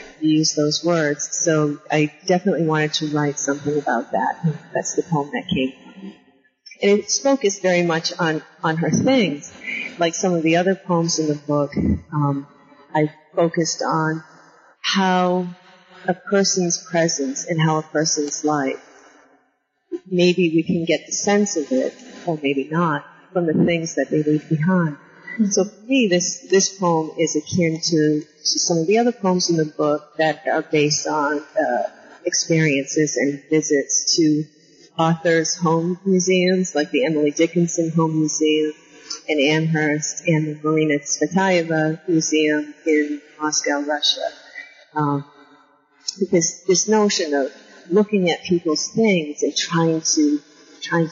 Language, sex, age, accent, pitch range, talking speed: English, female, 40-59, American, 150-175 Hz, 145 wpm